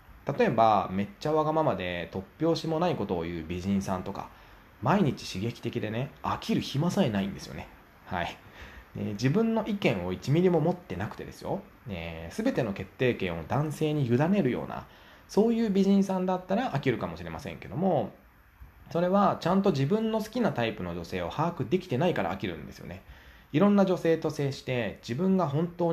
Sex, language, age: male, Japanese, 20-39